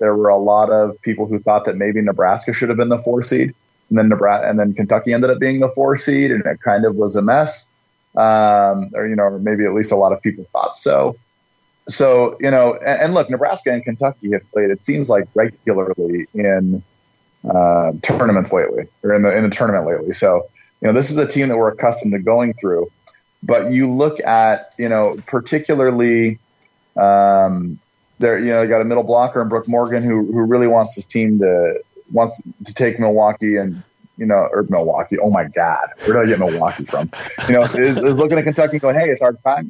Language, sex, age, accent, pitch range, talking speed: English, male, 30-49, American, 105-125 Hz, 220 wpm